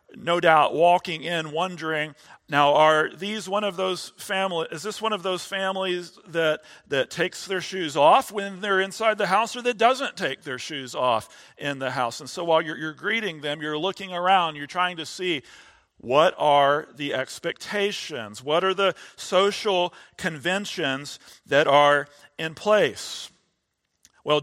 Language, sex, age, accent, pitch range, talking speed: English, male, 40-59, American, 155-205 Hz, 165 wpm